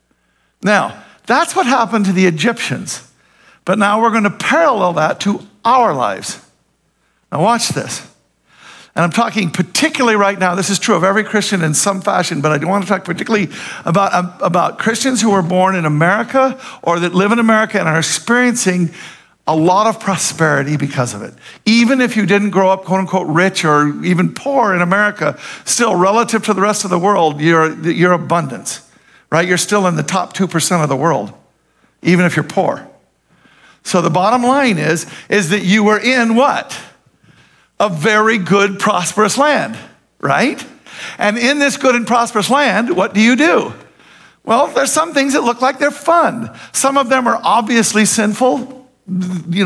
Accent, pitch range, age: American, 180-235 Hz, 50-69